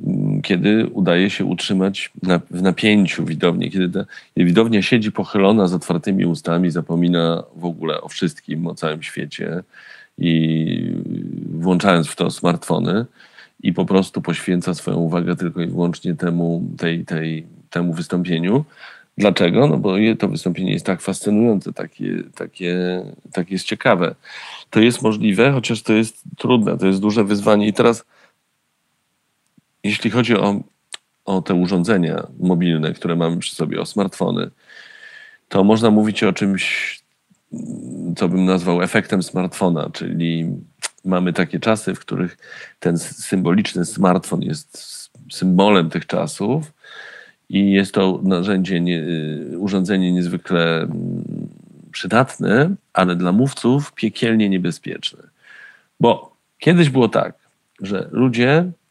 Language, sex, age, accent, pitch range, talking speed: Polish, male, 40-59, native, 85-110 Hz, 120 wpm